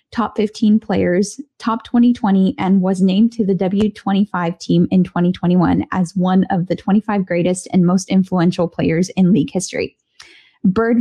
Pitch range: 195-230 Hz